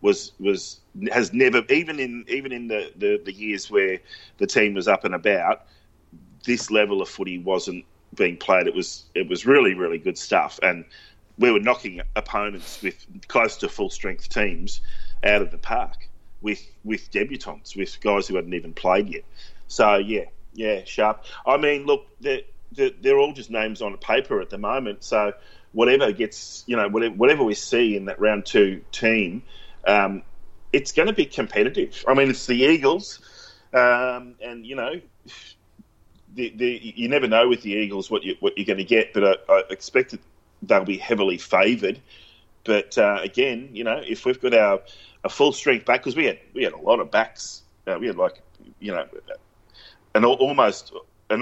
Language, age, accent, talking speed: English, 30-49, Australian, 190 wpm